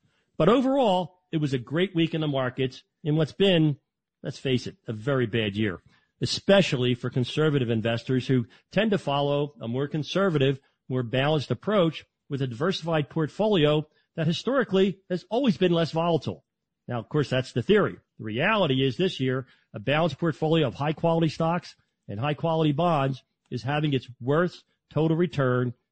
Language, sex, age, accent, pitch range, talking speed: English, male, 40-59, American, 125-165 Hz, 165 wpm